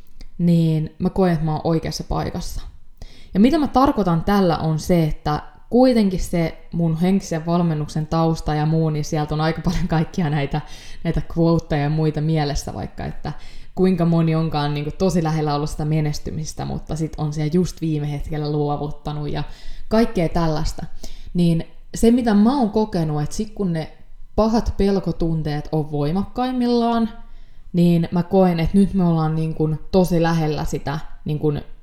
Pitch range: 155-185 Hz